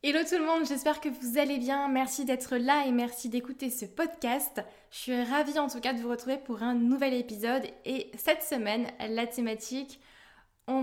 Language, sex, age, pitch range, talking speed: French, female, 20-39, 225-265 Hz, 200 wpm